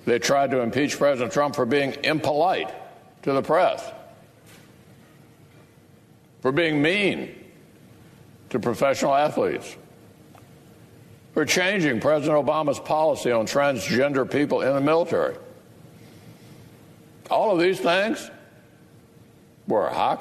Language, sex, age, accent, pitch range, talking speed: English, male, 60-79, American, 120-155 Hz, 105 wpm